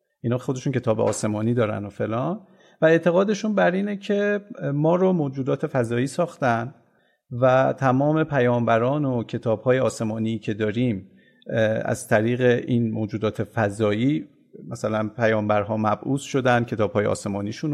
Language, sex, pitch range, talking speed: Persian, male, 115-165 Hz, 120 wpm